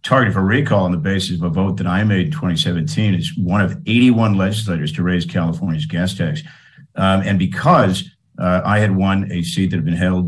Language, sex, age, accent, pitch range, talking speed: English, male, 50-69, American, 90-110 Hz, 215 wpm